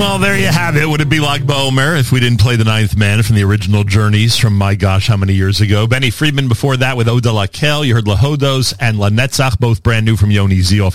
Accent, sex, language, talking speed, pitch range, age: American, male, English, 275 wpm, 100-125 Hz, 40-59